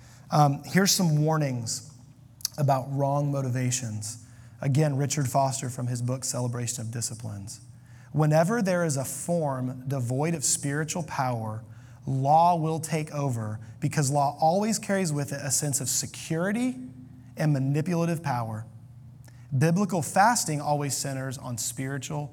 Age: 30-49